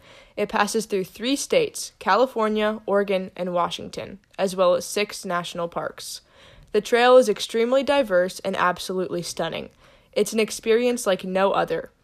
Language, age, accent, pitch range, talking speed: English, 20-39, American, 180-230 Hz, 145 wpm